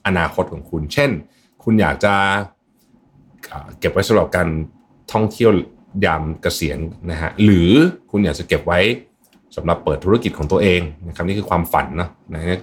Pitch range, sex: 90-125 Hz, male